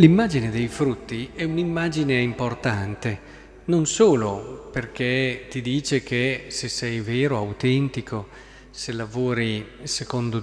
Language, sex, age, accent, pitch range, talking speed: Italian, male, 40-59, native, 110-145 Hz, 110 wpm